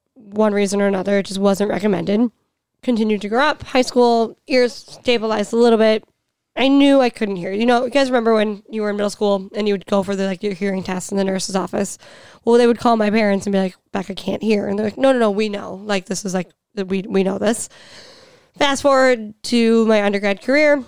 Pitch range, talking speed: 200-235 Hz, 245 wpm